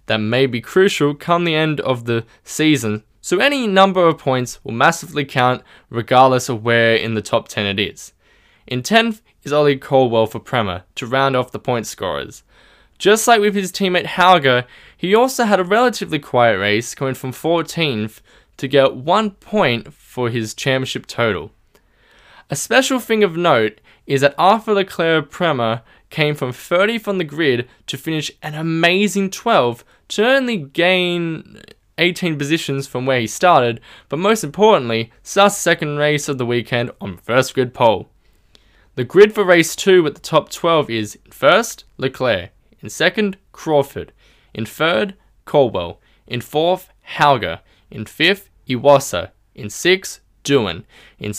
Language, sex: English, male